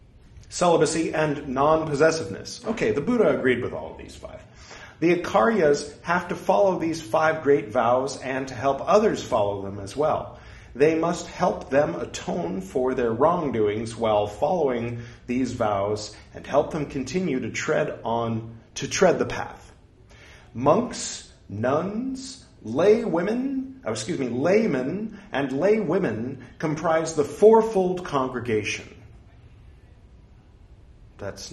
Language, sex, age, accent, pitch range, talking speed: English, male, 40-59, American, 105-155 Hz, 130 wpm